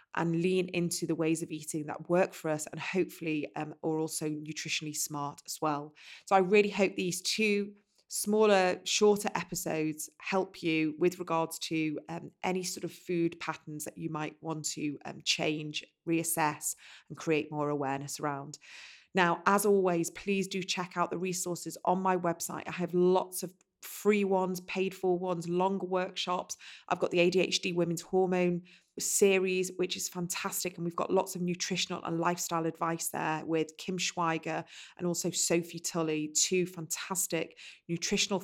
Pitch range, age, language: 160-185 Hz, 30-49, English